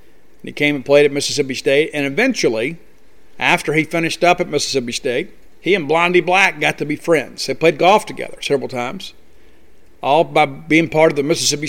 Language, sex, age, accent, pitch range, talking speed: English, male, 50-69, American, 140-165 Hz, 190 wpm